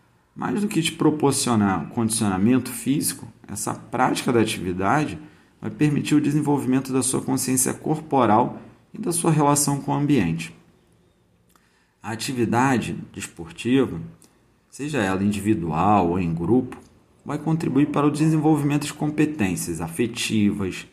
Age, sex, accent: 40-59, male, Brazilian